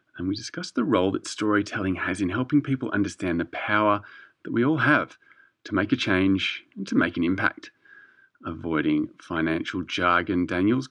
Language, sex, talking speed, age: English, male, 170 wpm, 30-49